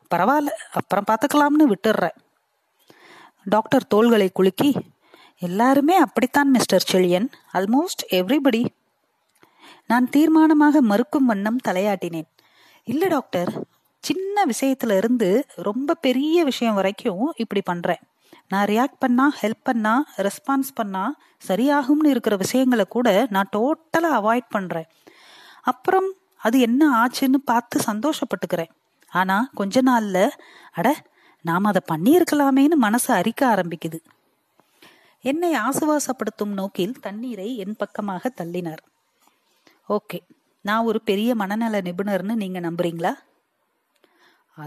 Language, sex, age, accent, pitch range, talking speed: Tamil, female, 30-49, native, 195-280 Hz, 30 wpm